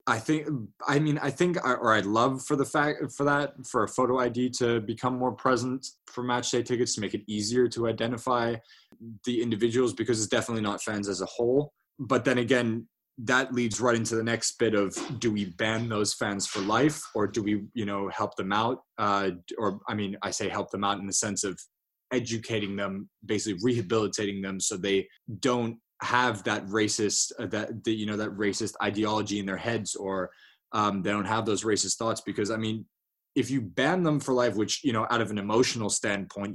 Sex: male